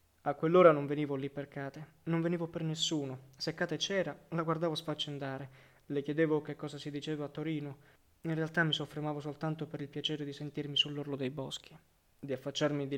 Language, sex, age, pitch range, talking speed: Italian, male, 20-39, 140-155 Hz, 190 wpm